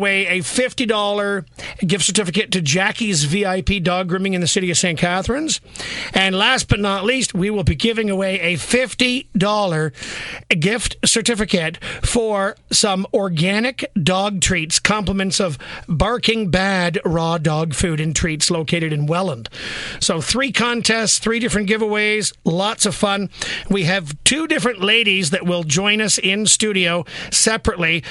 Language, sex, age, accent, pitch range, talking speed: English, male, 50-69, American, 175-215 Hz, 145 wpm